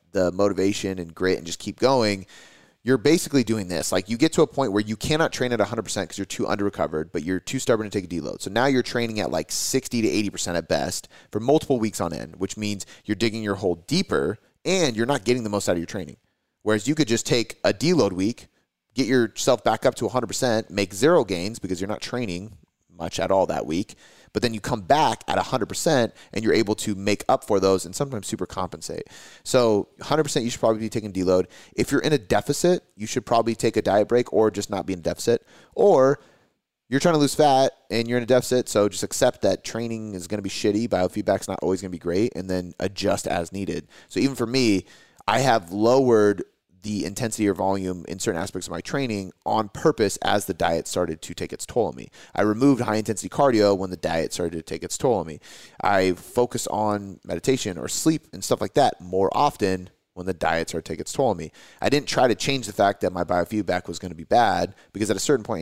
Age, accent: 30-49, American